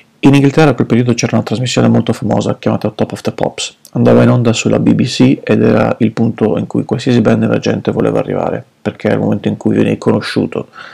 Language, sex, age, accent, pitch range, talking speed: Italian, male, 40-59, native, 110-130 Hz, 220 wpm